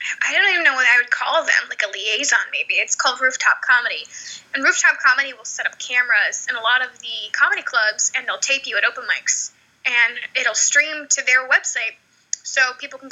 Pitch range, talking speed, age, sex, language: 245-290 Hz, 215 wpm, 10-29, female, English